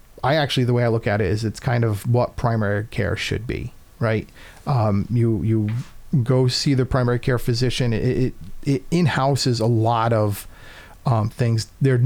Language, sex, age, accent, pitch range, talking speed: English, male, 40-59, American, 110-130 Hz, 190 wpm